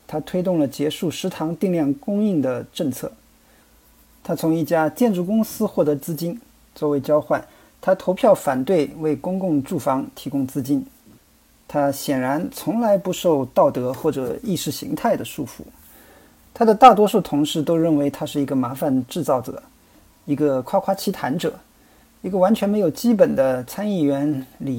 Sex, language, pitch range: male, Chinese, 140-185 Hz